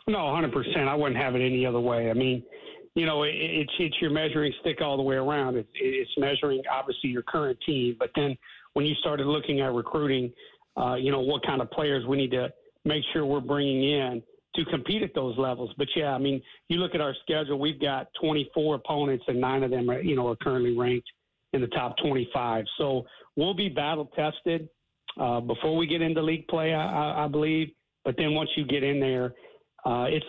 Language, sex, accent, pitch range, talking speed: English, male, American, 130-155 Hz, 205 wpm